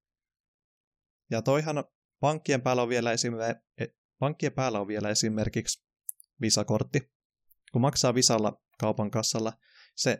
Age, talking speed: 20-39, 105 wpm